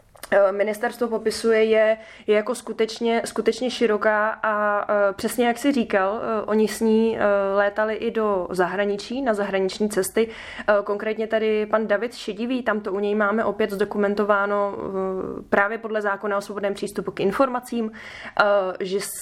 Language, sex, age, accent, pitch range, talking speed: Czech, female, 20-39, native, 200-220 Hz, 135 wpm